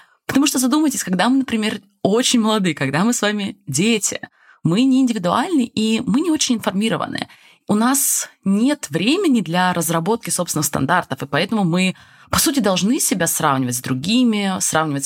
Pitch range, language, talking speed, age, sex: 180-245 Hz, Russian, 160 wpm, 20-39, female